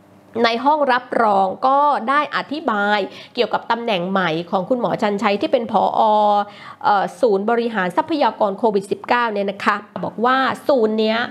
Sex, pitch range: female, 210-290 Hz